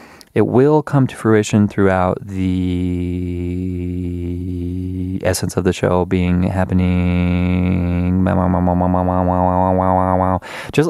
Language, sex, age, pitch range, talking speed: English, male, 20-39, 90-150 Hz, 75 wpm